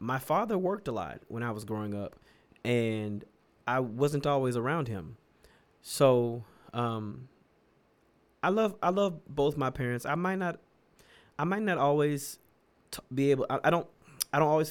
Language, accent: English, American